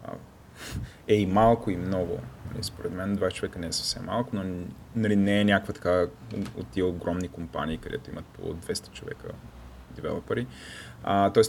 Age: 30-49